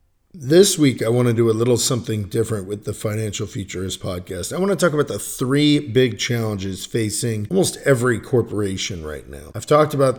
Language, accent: English, American